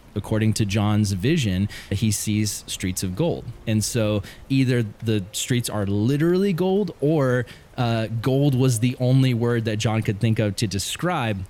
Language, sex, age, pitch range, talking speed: English, male, 20-39, 100-125 Hz, 160 wpm